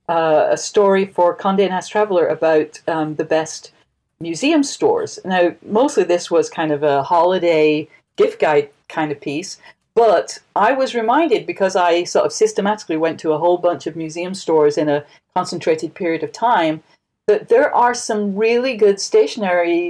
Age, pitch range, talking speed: 50-69, 165-265 Hz, 170 wpm